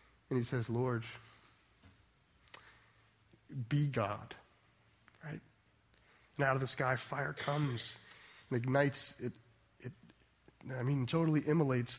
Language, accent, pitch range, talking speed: English, American, 130-215 Hz, 110 wpm